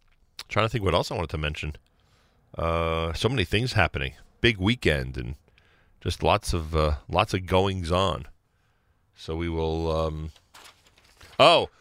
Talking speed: 150 wpm